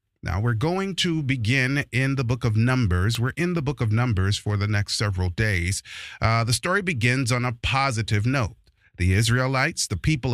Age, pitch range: 30-49, 115-165 Hz